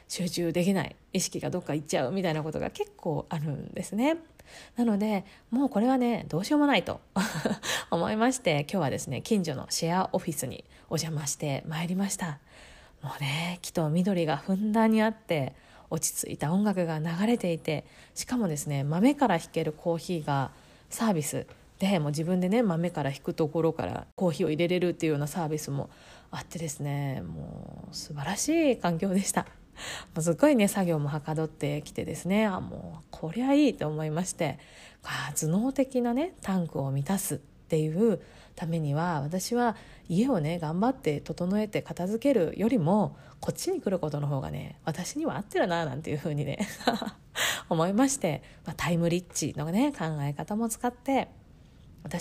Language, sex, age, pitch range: Japanese, female, 20-39, 155-210 Hz